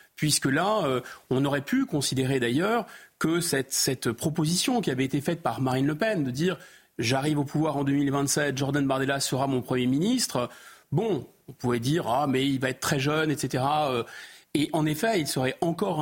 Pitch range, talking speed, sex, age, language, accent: 140-190 Hz, 185 wpm, male, 40-59, French, French